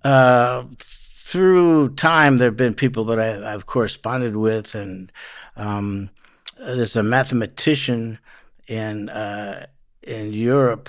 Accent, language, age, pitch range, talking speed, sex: American, English, 60-79, 105-125 Hz, 115 wpm, male